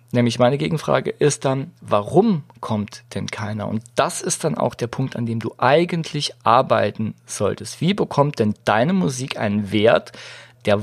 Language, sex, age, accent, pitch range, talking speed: German, male, 40-59, German, 115-145 Hz, 165 wpm